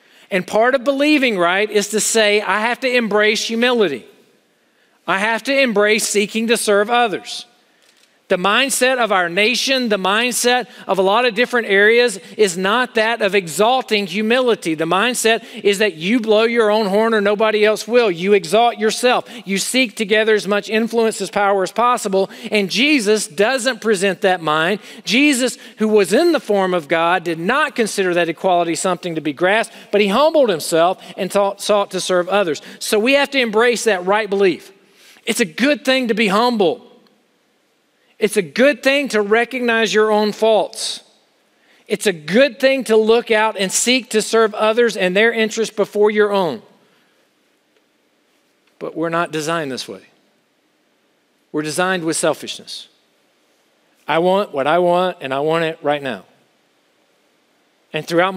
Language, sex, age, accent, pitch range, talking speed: English, male, 40-59, American, 185-230 Hz, 170 wpm